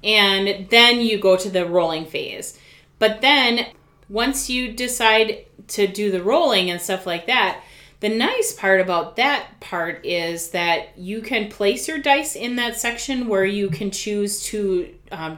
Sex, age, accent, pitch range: female, 30-49, American, 190-245 Hz